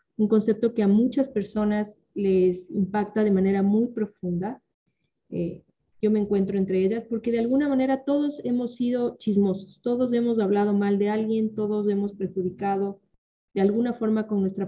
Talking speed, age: 165 wpm, 30-49